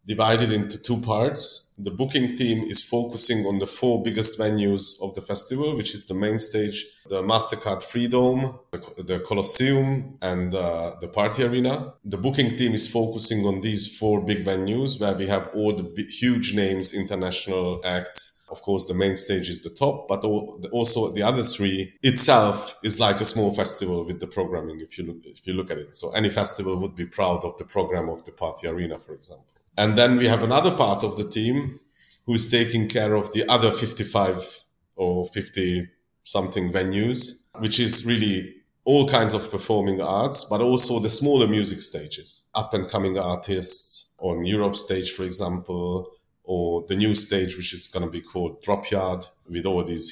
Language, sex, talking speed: French, male, 180 wpm